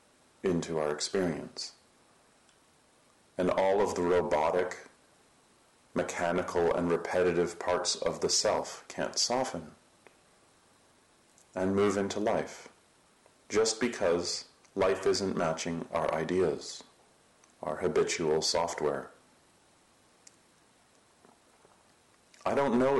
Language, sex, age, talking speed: English, male, 40-59, 90 wpm